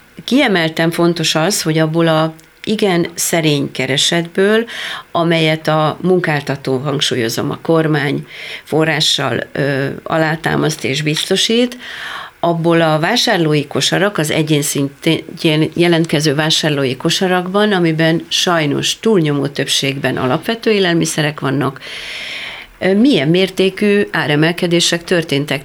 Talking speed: 95 wpm